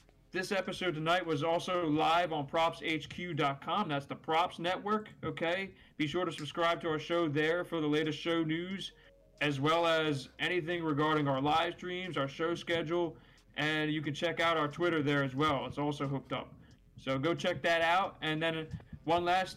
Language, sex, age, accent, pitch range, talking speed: English, male, 30-49, American, 145-170 Hz, 185 wpm